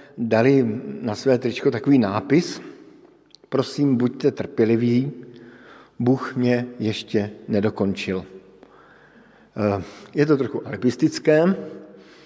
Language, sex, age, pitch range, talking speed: Slovak, male, 50-69, 115-145 Hz, 85 wpm